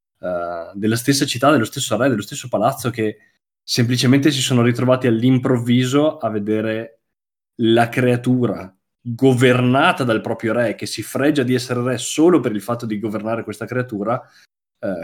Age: 20-39